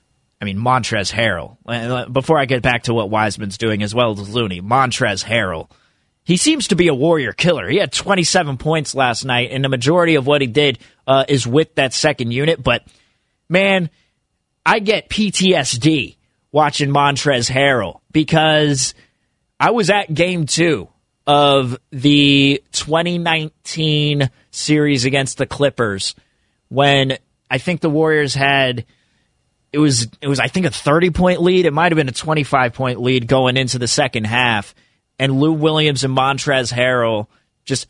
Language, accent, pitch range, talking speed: English, American, 125-155 Hz, 155 wpm